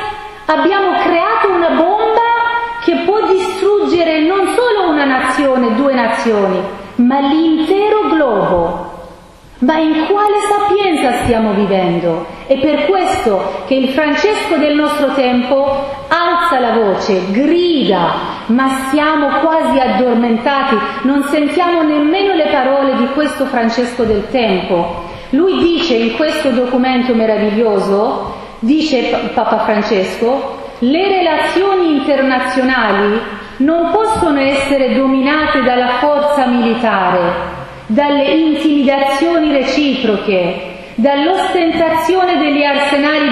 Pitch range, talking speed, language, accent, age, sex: 235-320 Hz, 105 wpm, Italian, native, 40-59, female